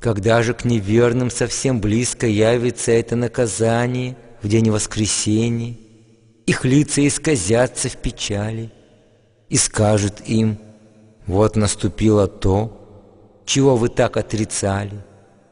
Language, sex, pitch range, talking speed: English, male, 110-140 Hz, 105 wpm